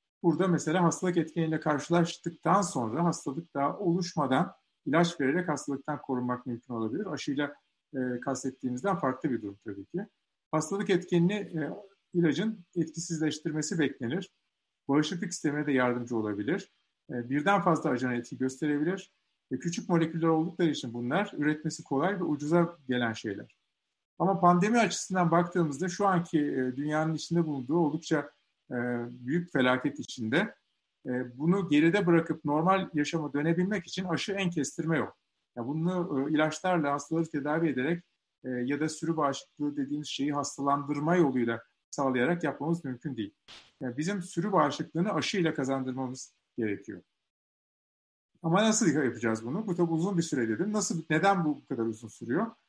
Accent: native